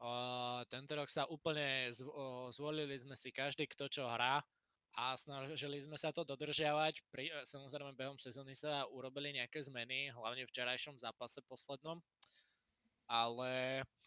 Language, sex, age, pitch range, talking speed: Slovak, male, 20-39, 130-150 Hz, 145 wpm